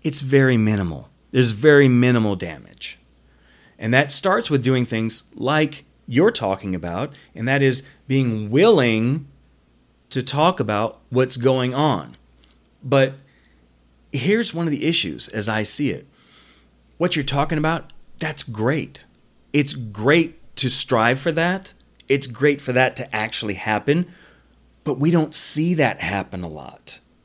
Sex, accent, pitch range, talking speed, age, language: male, American, 100-140 Hz, 145 wpm, 40-59, English